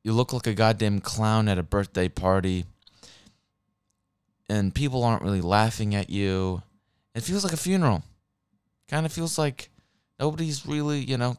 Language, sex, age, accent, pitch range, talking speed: English, male, 20-39, American, 100-130 Hz, 160 wpm